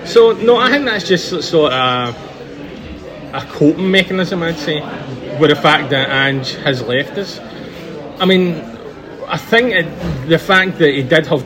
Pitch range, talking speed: 140-165 Hz, 170 wpm